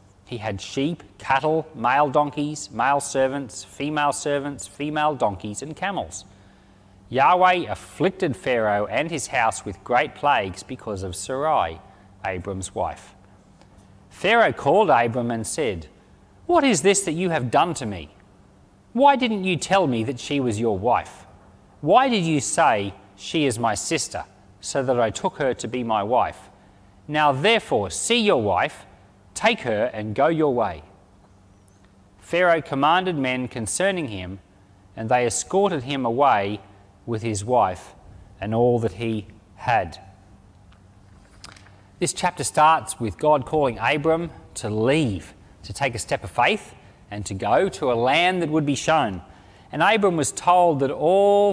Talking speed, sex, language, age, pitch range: 150 wpm, male, English, 30-49, 100-150 Hz